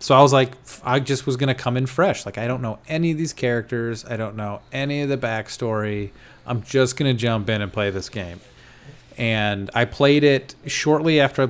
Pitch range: 105-130 Hz